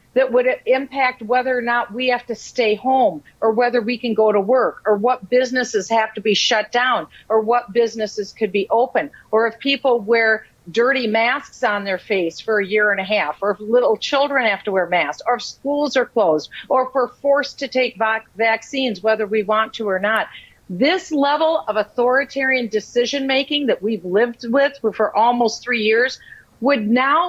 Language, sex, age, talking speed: English, female, 50-69, 195 wpm